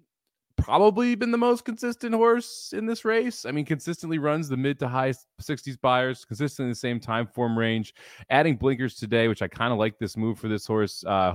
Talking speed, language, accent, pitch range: 210 wpm, English, American, 100-135 Hz